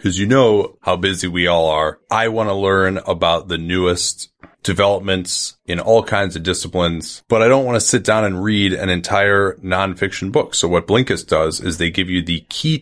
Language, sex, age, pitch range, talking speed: English, male, 30-49, 90-120 Hz, 205 wpm